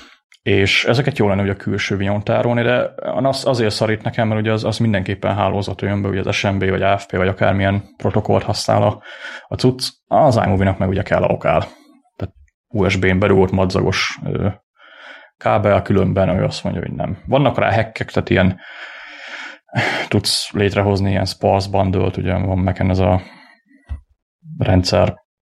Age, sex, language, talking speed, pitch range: 30-49, male, Hungarian, 165 wpm, 95-110 Hz